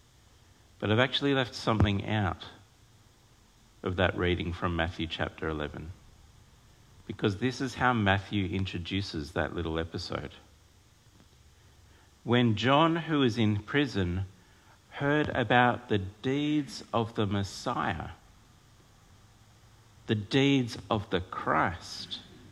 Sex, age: male, 50-69